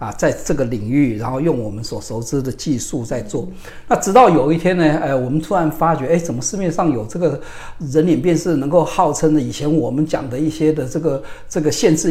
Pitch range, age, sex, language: 120-160 Hz, 50-69, male, Chinese